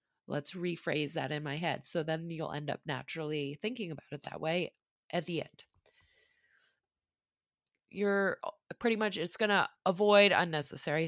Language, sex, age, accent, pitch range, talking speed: English, female, 20-39, American, 155-180 Hz, 150 wpm